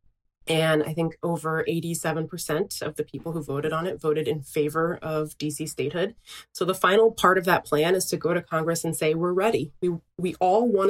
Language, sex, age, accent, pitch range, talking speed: English, female, 20-39, American, 150-170 Hz, 210 wpm